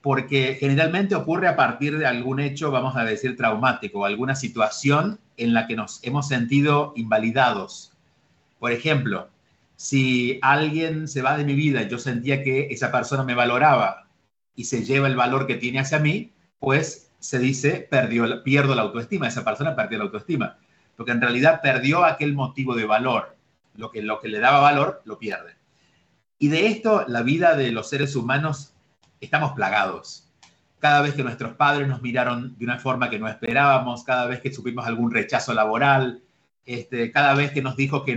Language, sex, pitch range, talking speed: Spanish, male, 120-145 Hz, 180 wpm